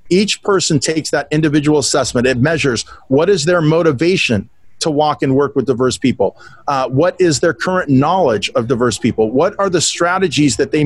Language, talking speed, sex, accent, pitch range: English, 190 wpm, male, American, 130-165 Hz